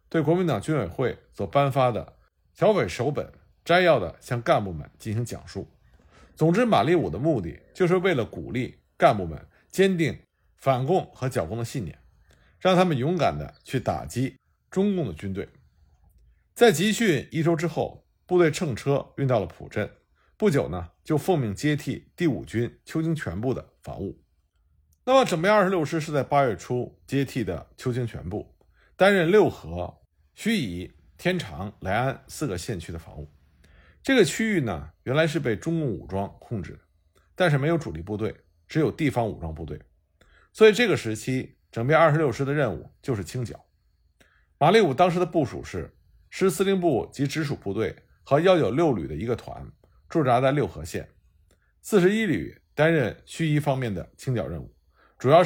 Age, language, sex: 50-69, Chinese, male